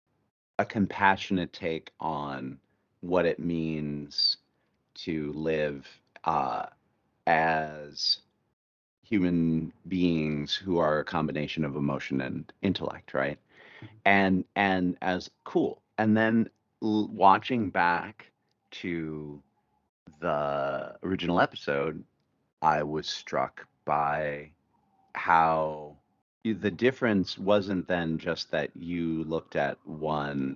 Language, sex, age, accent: English, male, 40-59, American